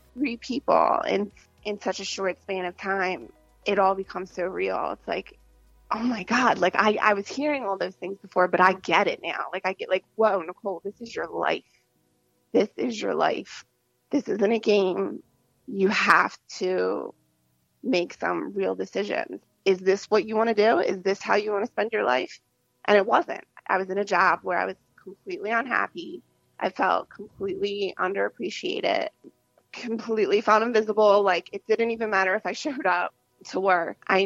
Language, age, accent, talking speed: English, 20-39, American, 185 wpm